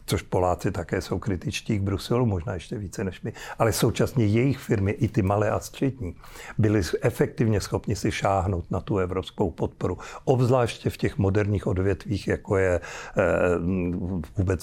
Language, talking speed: Czech, 155 wpm